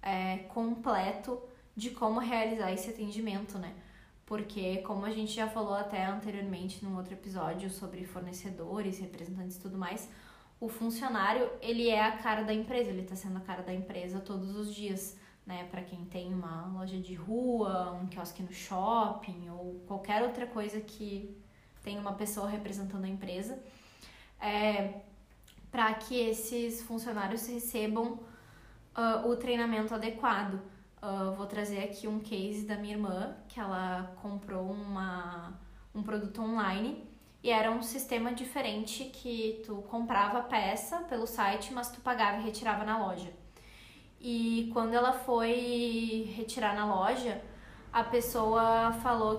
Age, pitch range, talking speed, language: 10-29, 190-230 Hz, 145 wpm, Portuguese